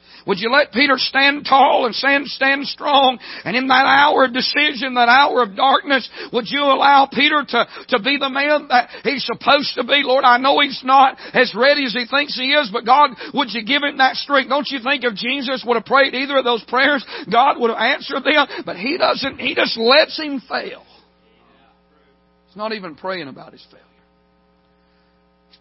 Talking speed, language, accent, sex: 205 wpm, English, American, male